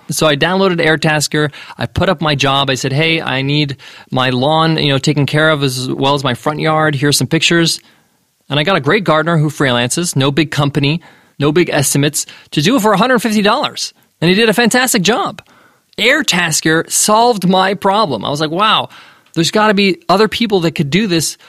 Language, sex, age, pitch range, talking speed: English, male, 20-39, 145-190 Hz, 200 wpm